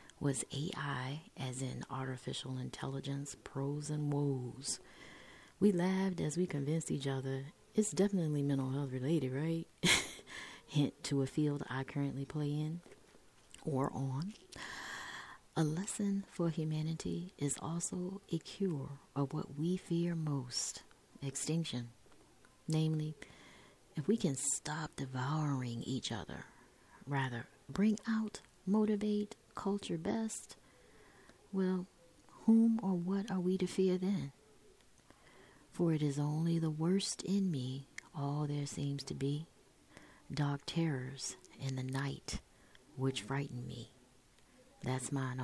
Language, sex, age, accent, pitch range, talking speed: English, female, 30-49, American, 135-170 Hz, 120 wpm